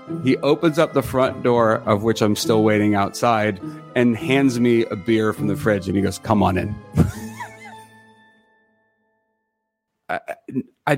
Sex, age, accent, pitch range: male, 30-49, American, 110-140 Hz